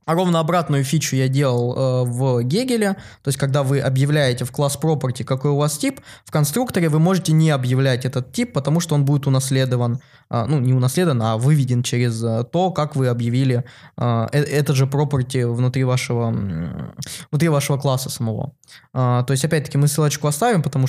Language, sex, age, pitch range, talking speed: Russian, male, 20-39, 125-155 Hz, 185 wpm